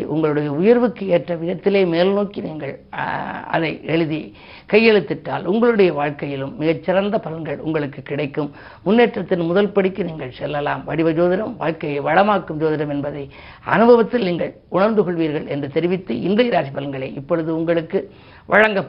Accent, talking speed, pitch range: native, 65 wpm, 150-195 Hz